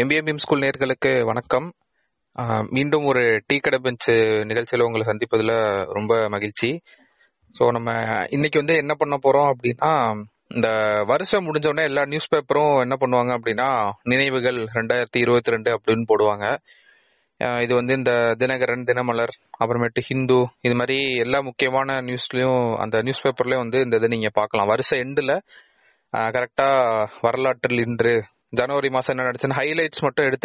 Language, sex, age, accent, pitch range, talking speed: Tamil, male, 30-49, native, 115-135 Hz, 130 wpm